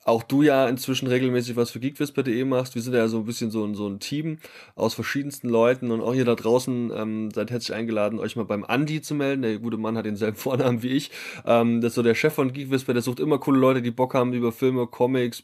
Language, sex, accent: German, male, German